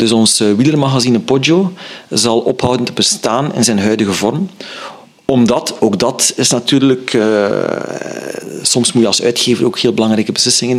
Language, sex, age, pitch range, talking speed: Dutch, male, 40-59, 115-140 Hz, 150 wpm